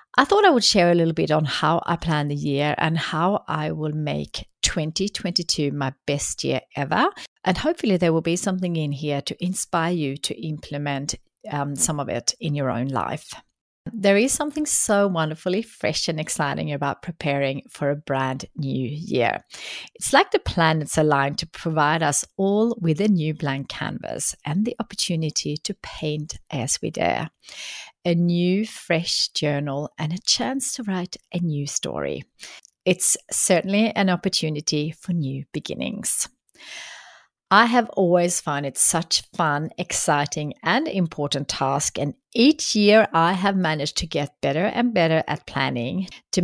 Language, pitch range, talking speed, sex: English, 145-190 Hz, 165 wpm, female